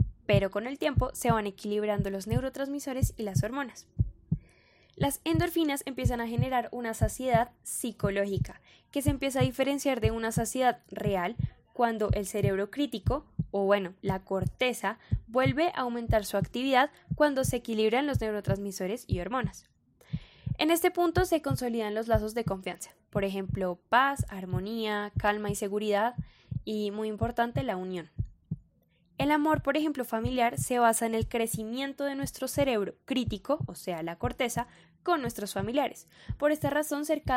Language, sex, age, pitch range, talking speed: Spanish, female, 10-29, 205-255 Hz, 155 wpm